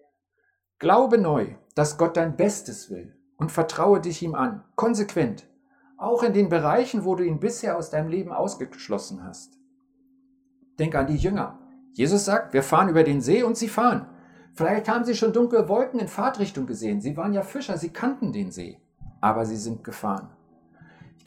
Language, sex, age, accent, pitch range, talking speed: German, male, 60-79, German, 160-240 Hz, 175 wpm